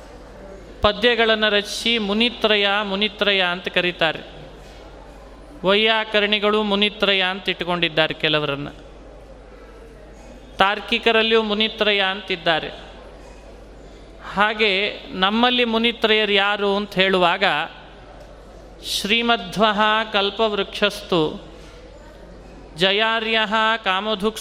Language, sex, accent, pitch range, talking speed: Kannada, male, native, 190-225 Hz, 60 wpm